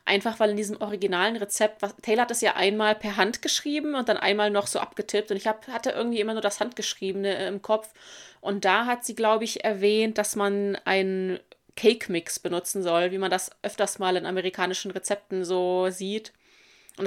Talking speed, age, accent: 195 wpm, 20-39, German